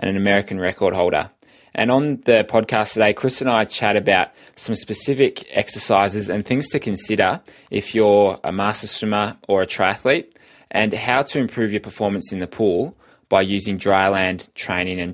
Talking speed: 175 wpm